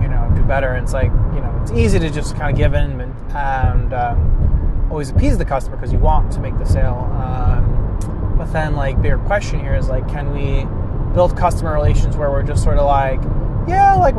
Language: English